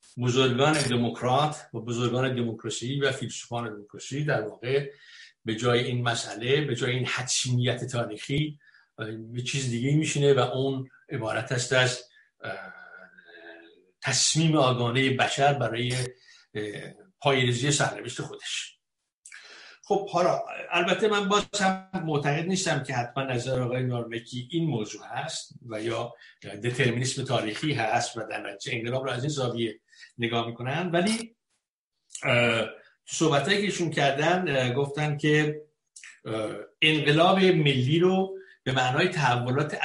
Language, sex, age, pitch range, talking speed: Persian, male, 60-79, 125-160 Hz, 110 wpm